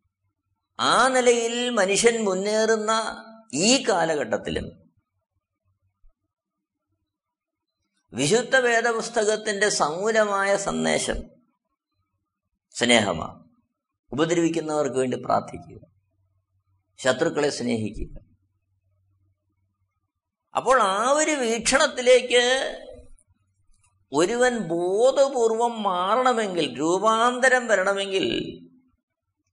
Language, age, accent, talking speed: Malayalam, 50-69, native, 50 wpm